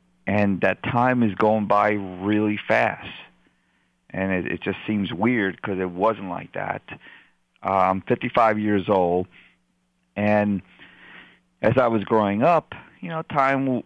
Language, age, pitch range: English, 40-59, 95-115 Hz